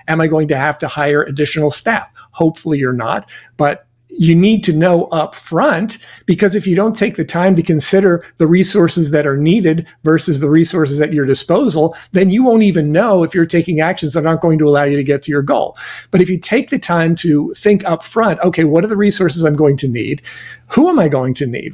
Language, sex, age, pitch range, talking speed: English, male, 50-69, 150-180 Hz, 225 wpm